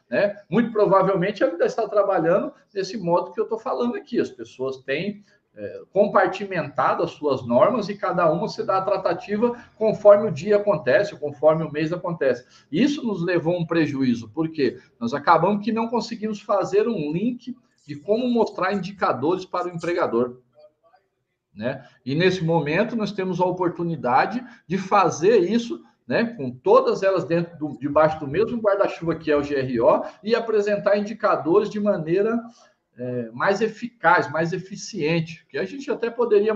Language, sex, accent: Portuguese, male, Brazilian